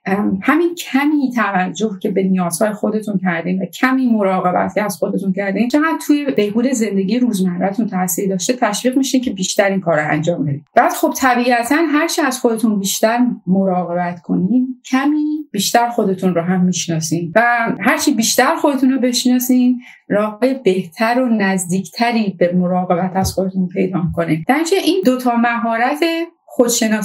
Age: 30-49